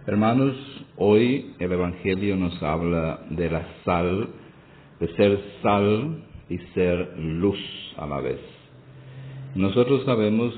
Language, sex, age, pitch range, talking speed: English, male, 50-69, 85-105 Hz, 115 wpm